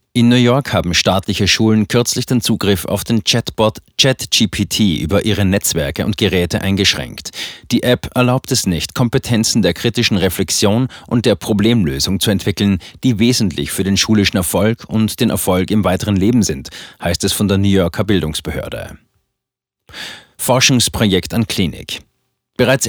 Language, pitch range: German, 95-115 Hz